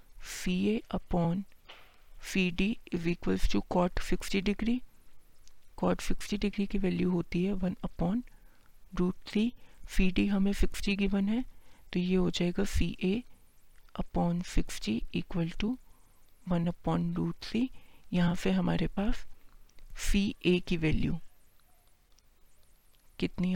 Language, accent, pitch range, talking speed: Hindi, native, 175-210 Hz, 130 wpm